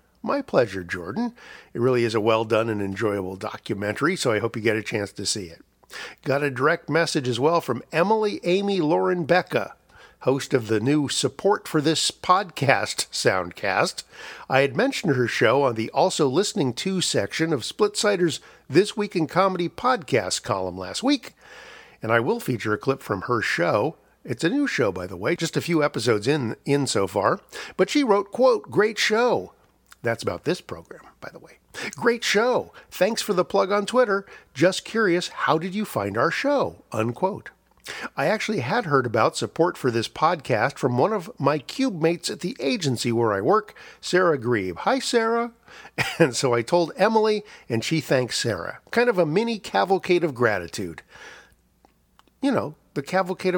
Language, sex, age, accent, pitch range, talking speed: English, male, 50-69, American, 120-200 Hz, 180 wpm